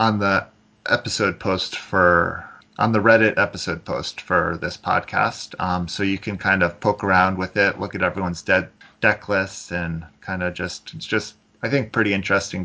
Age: 30-49